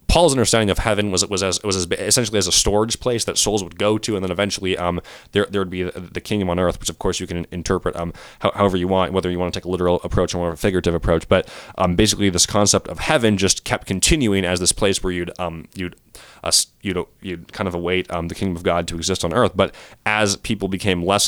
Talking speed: 255 wpm